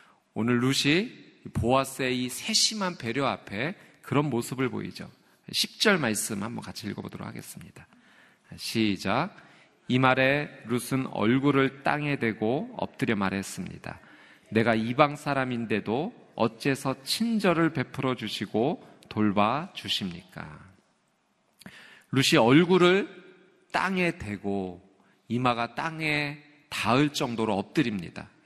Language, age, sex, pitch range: Korean, 40-59, male, 120-165 Hz